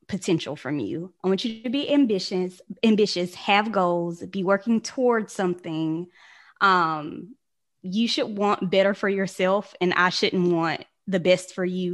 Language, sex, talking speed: English, female, 155 wpm